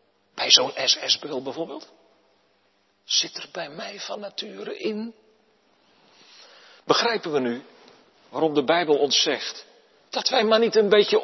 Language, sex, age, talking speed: Dutch, male, 40-59, 135 wpm